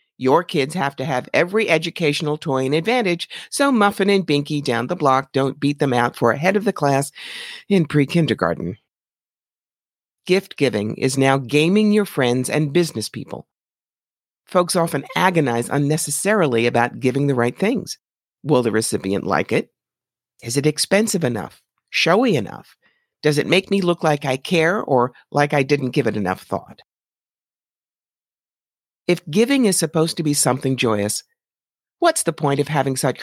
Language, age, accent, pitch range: English, 50-69, American, 130-185 Hz